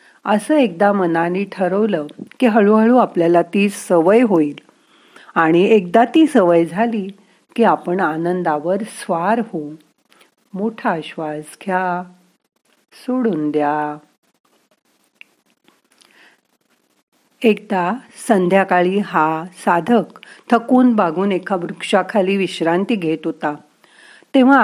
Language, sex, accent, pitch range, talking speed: Marathi, female, native, 175-235 Hz, 90 wpm